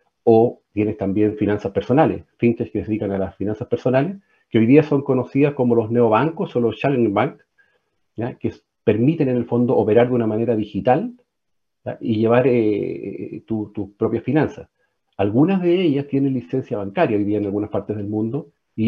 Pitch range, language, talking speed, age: 105-135 Hz, Spanish, 180 wpm, 50-69